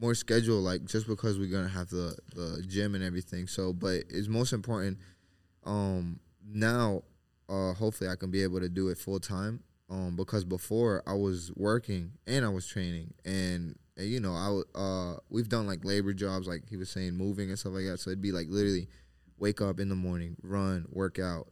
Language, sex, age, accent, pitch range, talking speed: English, male, 20-39, American, 90-105 Hz, 210 wpm